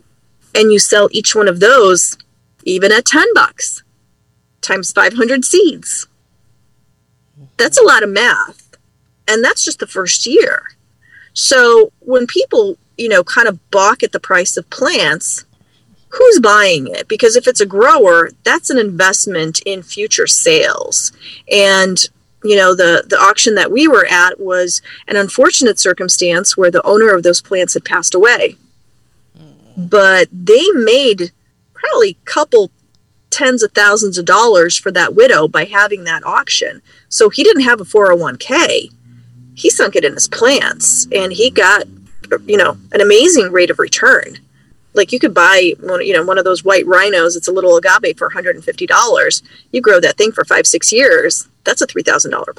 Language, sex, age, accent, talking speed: English, female, 40-59, American, 165 wpm